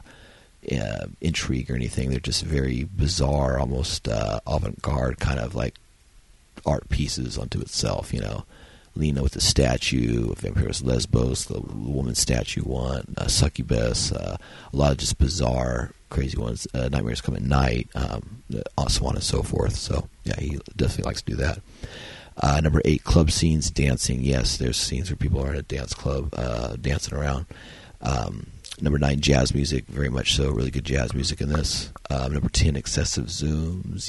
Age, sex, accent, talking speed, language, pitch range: 40-59, male, American, 170 wpm, English, 65-80 Hz